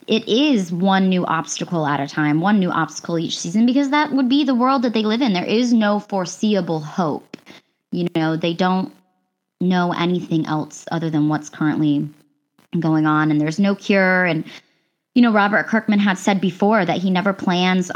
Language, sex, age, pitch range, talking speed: English, male, 20-39, 165-205 Hz, 190 wpm